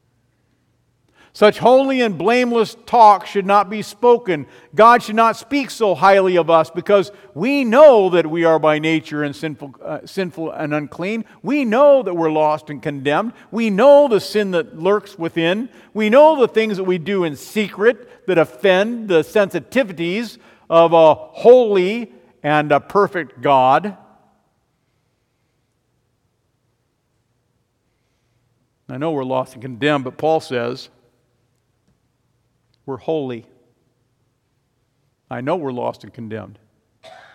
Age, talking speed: 50-69, 130 wpm